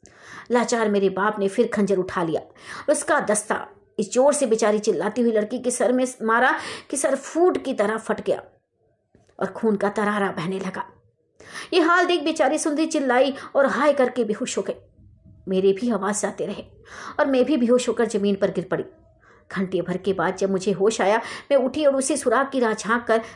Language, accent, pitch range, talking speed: Hindi, native, 195-250 Hz, 195 wpm